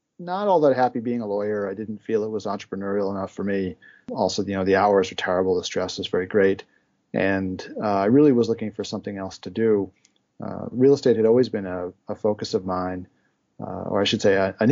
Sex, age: male, 30-49